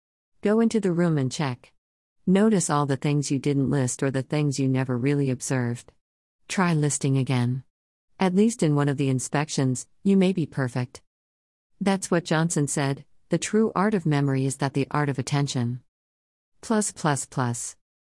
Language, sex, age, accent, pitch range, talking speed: English, female, 40-59, American, 130-170 Hz, 170 wpm